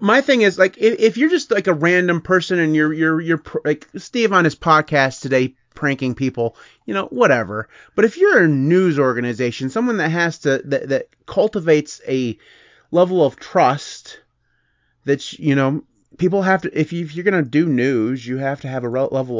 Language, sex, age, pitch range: English, male, 30-49, 125-170 Hz